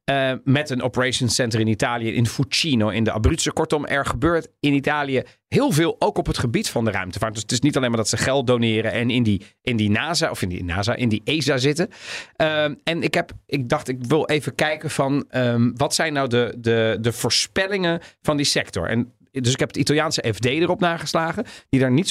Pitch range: 115-150 Hz